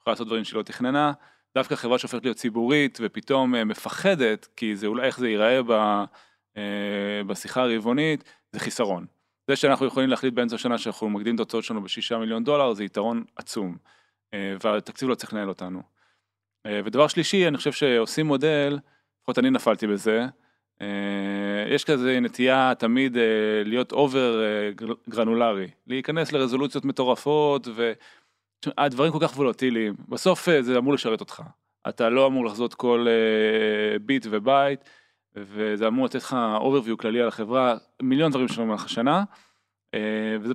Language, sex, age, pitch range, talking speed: Hebrew, male, 20-39, 105-135 Hz, 155 wpm